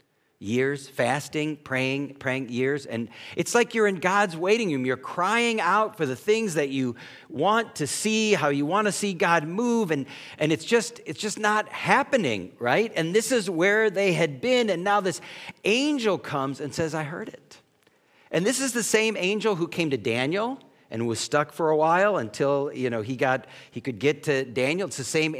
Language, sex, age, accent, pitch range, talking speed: English, male, 50-69, American, 145-210 Hz, 205 wpm